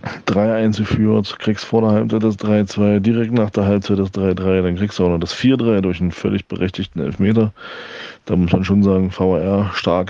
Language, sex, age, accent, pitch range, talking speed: German, male, 20-39, German, 90-105 Hz, 195 wpm